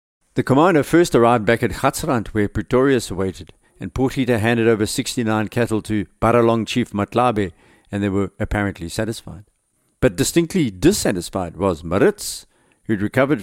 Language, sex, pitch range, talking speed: English, male, 100-125 Hz, 150 wpm